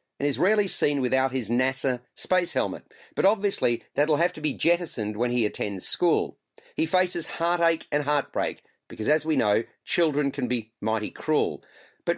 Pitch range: 125-175 Hz